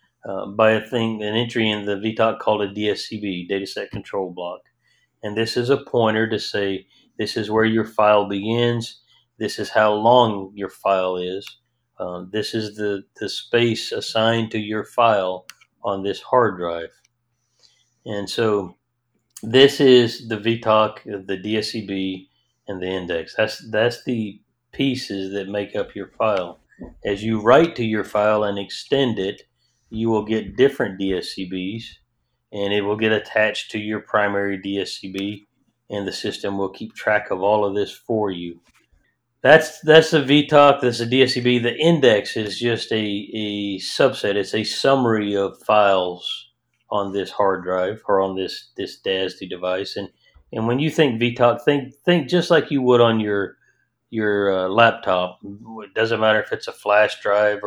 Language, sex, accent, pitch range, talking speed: English, male, American, 100-120 Hz, 165 wpm